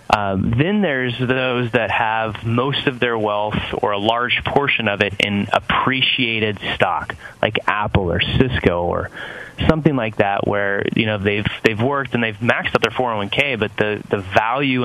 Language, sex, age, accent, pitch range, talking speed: English, male, 30-49, American, 105-125 Hz, 175 wpm